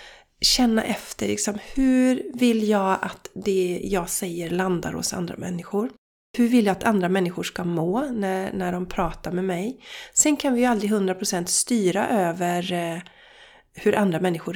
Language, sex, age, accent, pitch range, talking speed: Swedish, female, 30-49, native, 180-225 Hz, 165 wpm